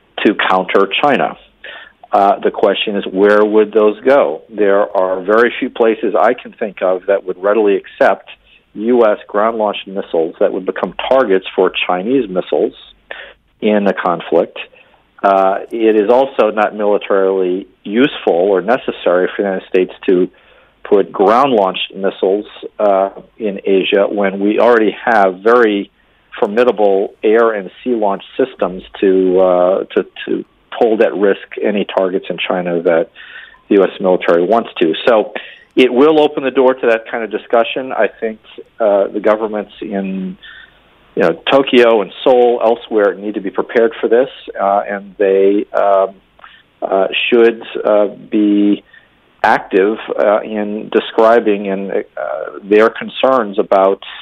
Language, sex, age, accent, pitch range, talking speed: English, male, 50-69, American, 95-115 Hz, 145 wpm